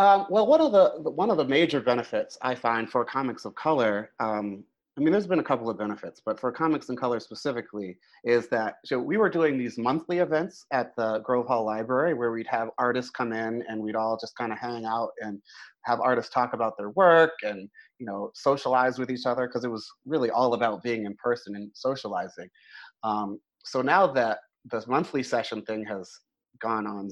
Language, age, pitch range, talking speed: English, 30-49, 110-130 Hz, 210 wpm